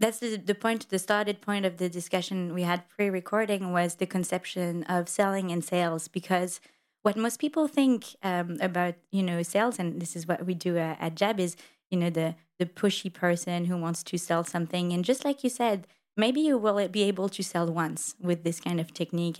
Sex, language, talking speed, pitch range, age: female, French, 215 wpm, 170-205 Hz, 20-39